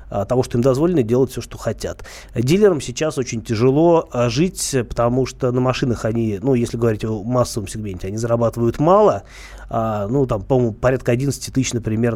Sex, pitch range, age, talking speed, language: male, 115-135 Hz, 20-39, 175 wpm, Russian